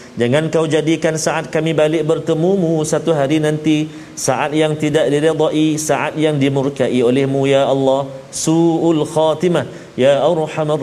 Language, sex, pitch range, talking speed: Malayalam, male, 135-160 Hz, 140 wpm